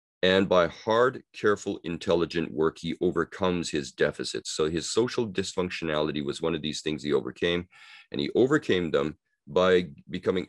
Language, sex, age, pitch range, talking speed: English, male, 40-59, 75-95 Hz, 155 wpm